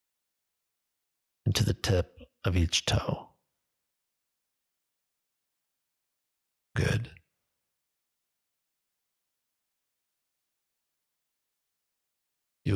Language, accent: English, American